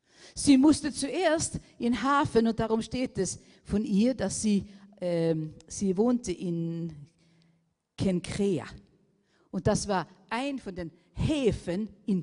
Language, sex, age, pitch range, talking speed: German, female, 50-69, 195-255 Hz, 130 wpm